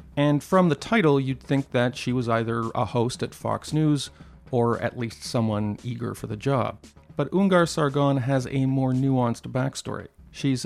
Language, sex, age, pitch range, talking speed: English, male, 40-59, 120-150 Hz, 180 wpm